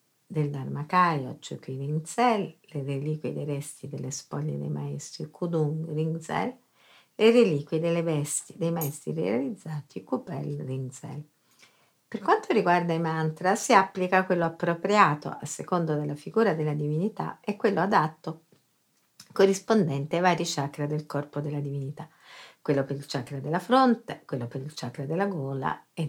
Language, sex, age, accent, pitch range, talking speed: Italian, female, 50-69, native, 145-180 Hz, 145 wpm